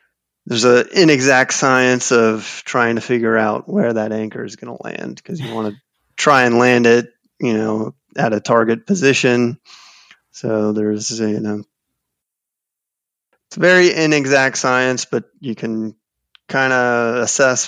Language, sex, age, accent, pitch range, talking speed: English, male, 30-49, American, 110-125 Hz, 150 wpm